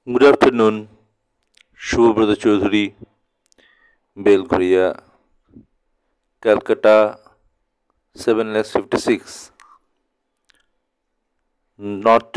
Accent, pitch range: native, 105-135 Hz